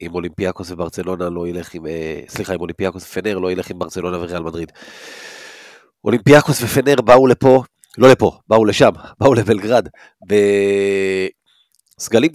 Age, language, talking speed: 30-49, Hebrew, 130 wpm